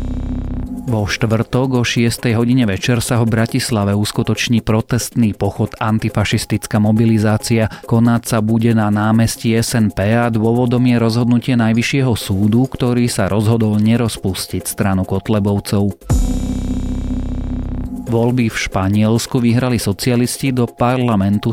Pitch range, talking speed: 100-115 Hz, 110 wpm